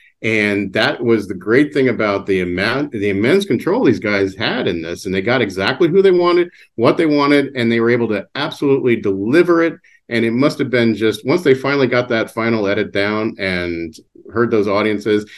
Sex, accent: male, American